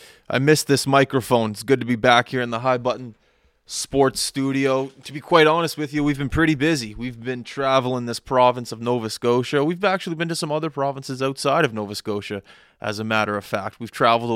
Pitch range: 110-135 Hz